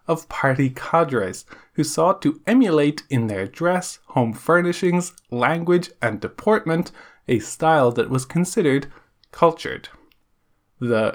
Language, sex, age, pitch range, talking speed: English, male, 20-39, 130-175 Hz, 120 wpm